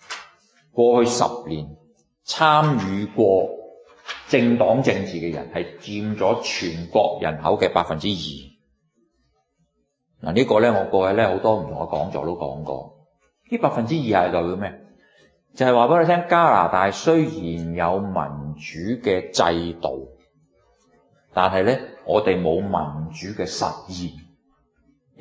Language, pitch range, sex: Chinese, 85-130 Hz, male